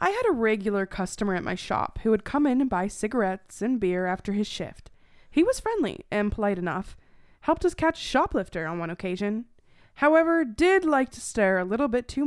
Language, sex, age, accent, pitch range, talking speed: English, female, 20-39, American, 190-250 Hz, 210 wpm